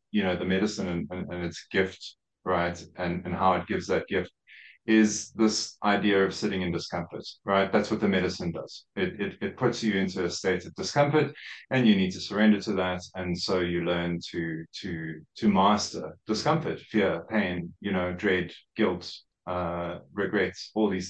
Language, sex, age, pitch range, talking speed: English, male, 30-49, 90-110 Hz, 190 wpm